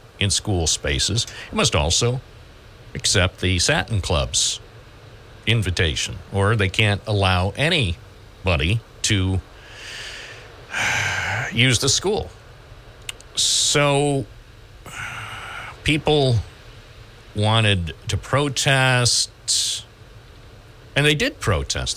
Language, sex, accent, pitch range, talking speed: English, male, American, 100-120 Hz, 80 wpm